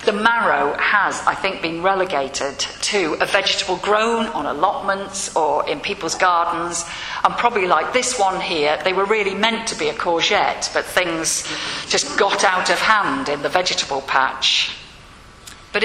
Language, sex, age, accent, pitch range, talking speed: English, female, 50-69, British, 165-225 Hz, 165 wpm